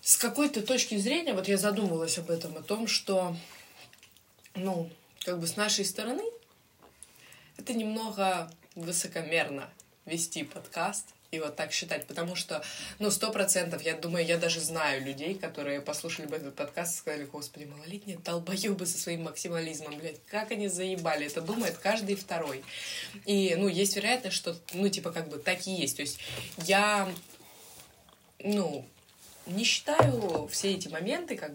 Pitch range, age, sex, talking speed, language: 150-195 Hz, 20-39, female, 155 wpm, Russian